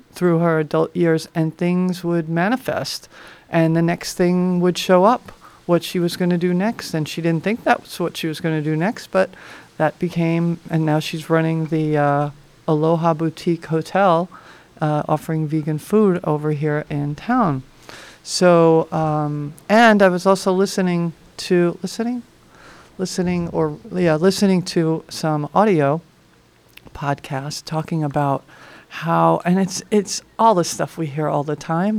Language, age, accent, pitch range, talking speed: English, 40-59, American, 155-180 Hz, 160 wpm